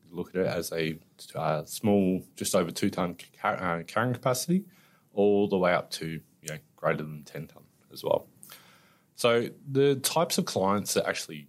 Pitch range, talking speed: 80-125 Hz, 155 wpm